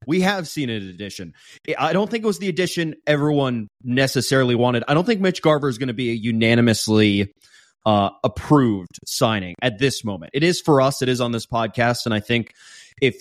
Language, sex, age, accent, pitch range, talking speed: English, male, 20-39, American, 110-135 Hz, 210 wpm